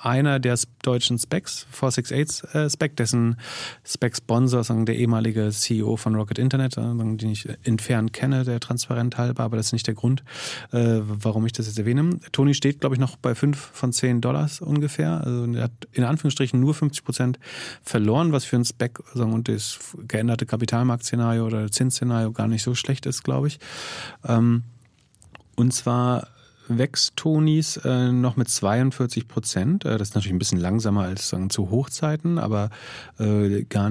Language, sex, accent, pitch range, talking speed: German, male, German, 115-135 Hz, 175 wpm